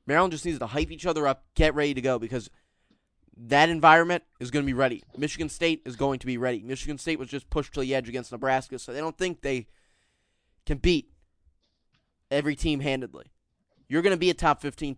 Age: 20-39